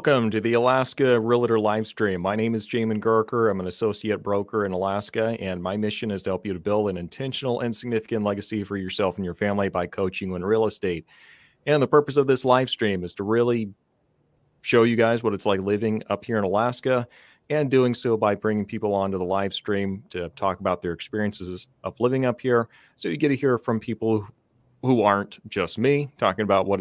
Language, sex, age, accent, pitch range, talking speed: English, male, 30-49, American, 95-115 Hz, 215 wpm